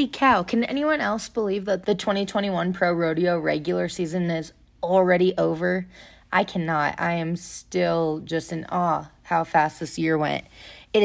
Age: 20-39